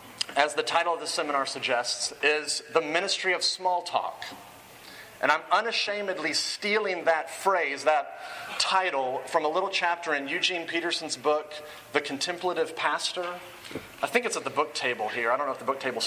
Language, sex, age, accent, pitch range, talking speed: English, male, 30-49, American, 150-190 Hz, 180 wpm